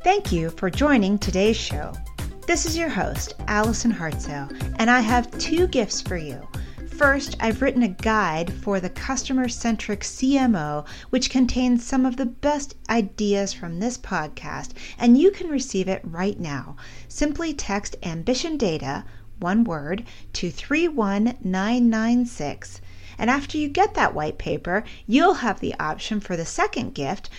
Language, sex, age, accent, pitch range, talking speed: English, female, 40-59, American, 180-250 Hz, 150 wpm